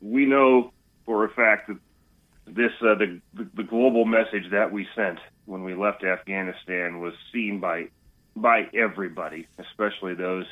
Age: 30-49